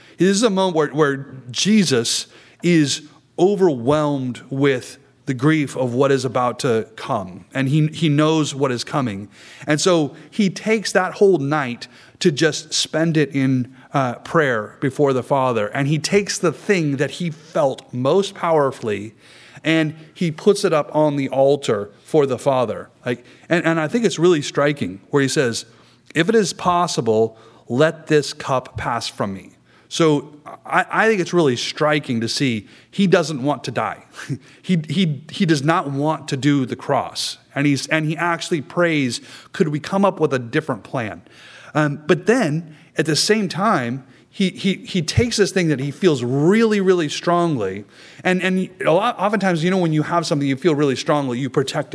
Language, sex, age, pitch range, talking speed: English, male, 30-49, 135-175 Hz, 180 wpm